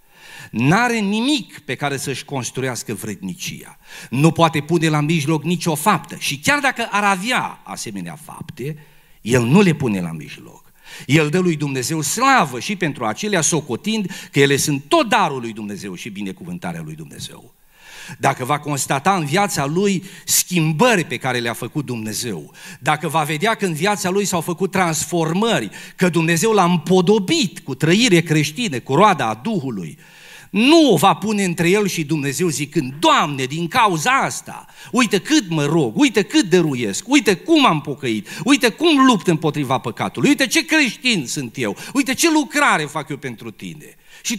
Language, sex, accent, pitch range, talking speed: Romanian, male, native, 145-210 Hz, 165 wpm